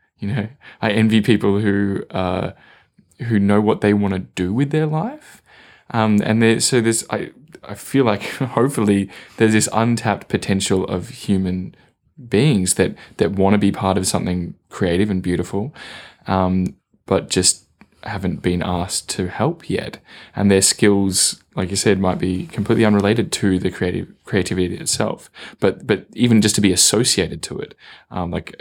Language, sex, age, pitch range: English, male, 10-29, 95-110 Hz